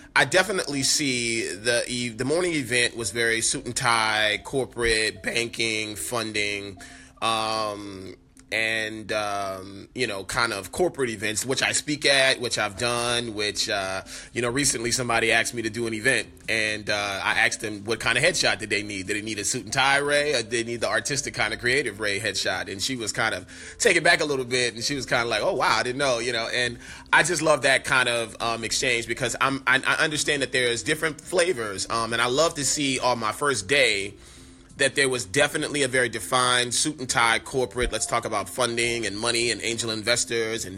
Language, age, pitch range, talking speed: English, 30-49, 110-130 Hz, 215 wpm